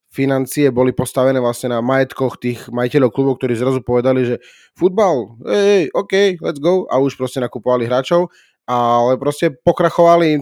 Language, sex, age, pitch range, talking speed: Slovak, male, 20-39, 120-150 Hz, 160 wpm